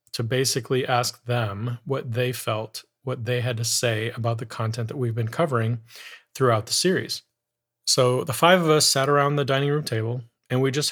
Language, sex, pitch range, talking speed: English, male, 115-130 Hz, 200 wpm